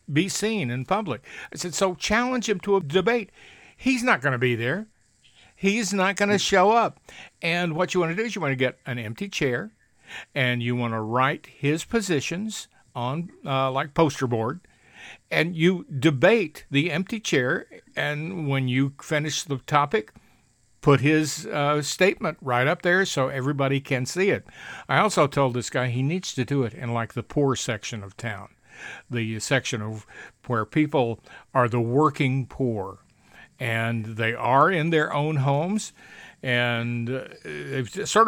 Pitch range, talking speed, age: 125-175 Hz, 170 wpm, 60-79